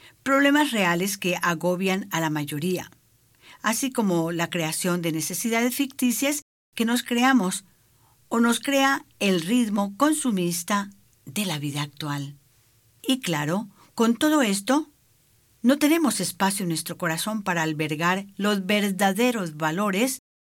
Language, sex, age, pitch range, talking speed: English, female, 50-69, 160-225 Hz, 125 wpm